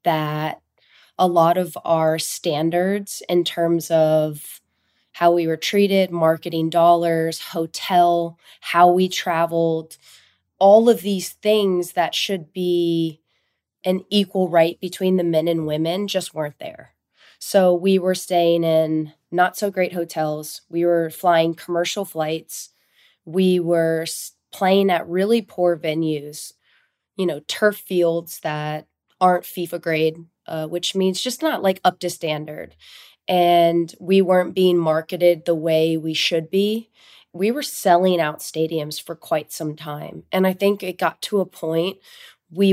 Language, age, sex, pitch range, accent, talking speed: English, 20-39, female, 160-185 Hz, American, 145 wpm